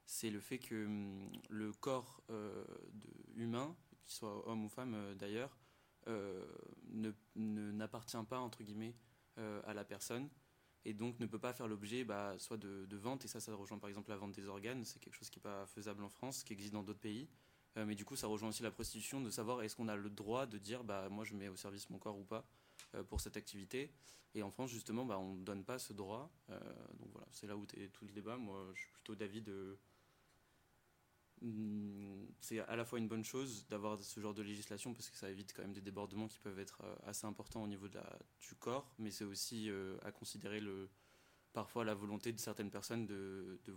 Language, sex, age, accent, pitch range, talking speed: French, male, 20-39, French, 100-115 Hz, 230 wpm